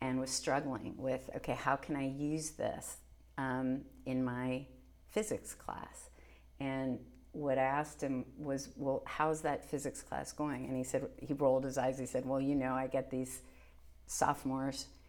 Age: 50-69